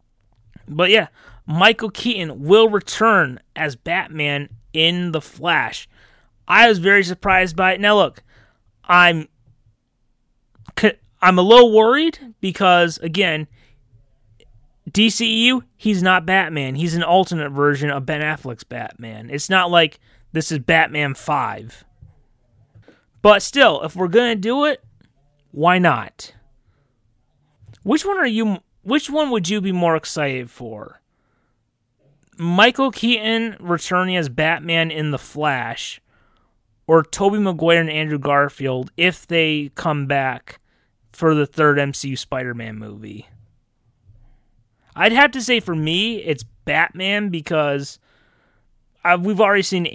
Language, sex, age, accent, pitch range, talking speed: English, male, 30-49, American, 125-185 Hz, 125 wpm